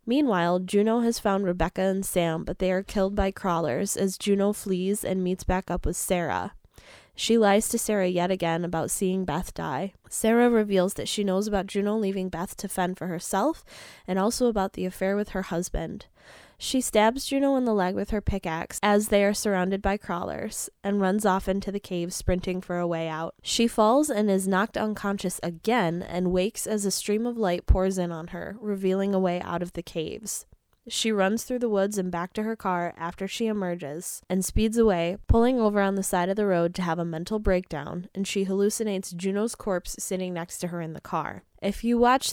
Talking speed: 210 wpm